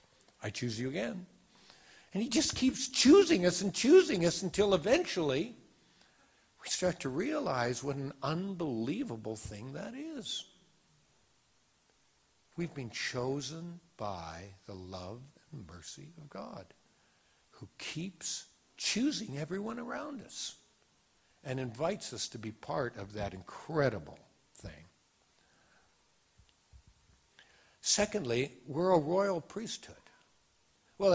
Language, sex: English, male